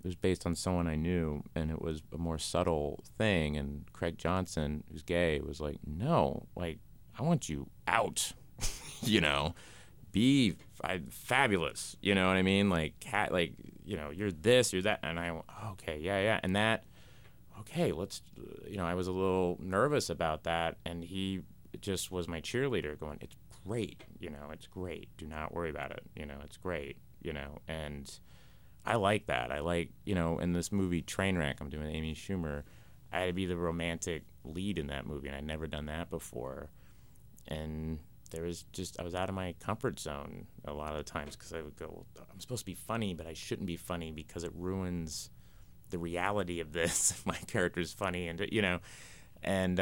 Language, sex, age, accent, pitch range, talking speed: English, male, 30-49, American, 80-95 Hz, 200 wpm